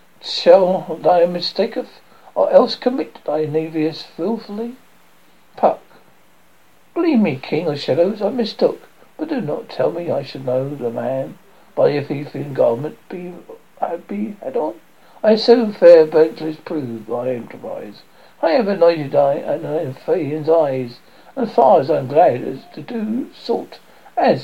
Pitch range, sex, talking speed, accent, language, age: 140-225 Hz, male, 155 wpm, British, English, 60-79